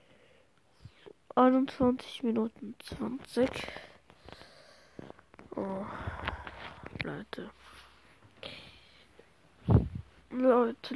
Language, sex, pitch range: German, female, 215-255 Hz